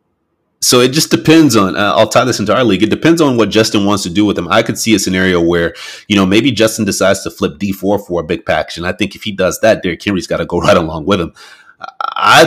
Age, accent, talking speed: 30-49, American, 275 wpm